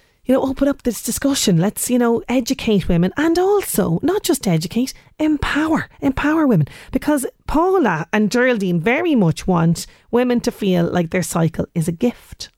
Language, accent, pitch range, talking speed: English, Irish, 175-255 Hz, 165 wpm